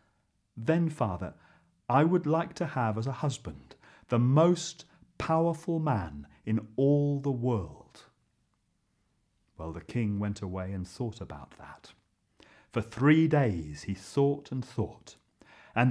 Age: 40-59